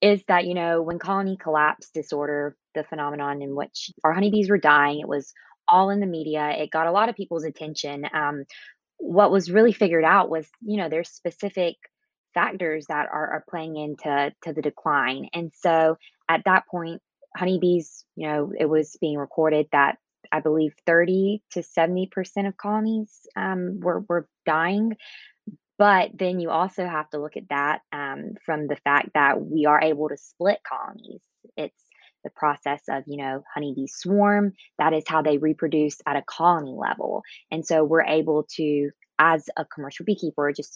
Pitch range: 150-185 Hz